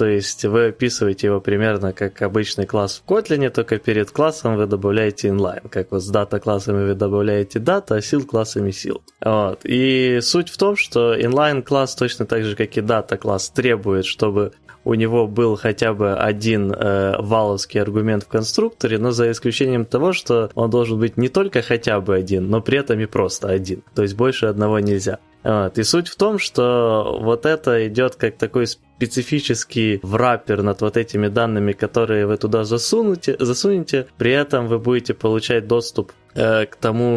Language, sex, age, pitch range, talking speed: Ukrainian, male, 20-39, 105-125 Hz, 175 wpm